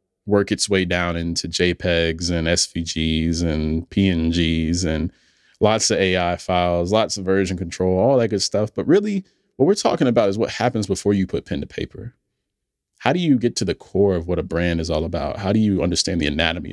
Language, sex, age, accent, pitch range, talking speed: English, male, 20-39, American, 85-100 Hz, 210 wpm